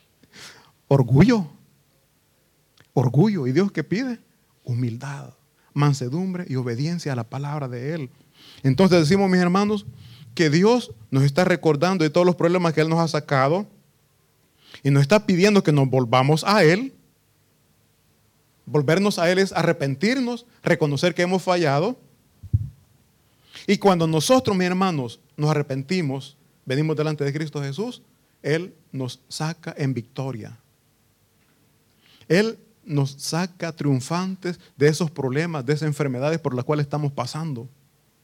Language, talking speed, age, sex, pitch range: Italian, 130 wpm, 30-49, male, 140-185 Hz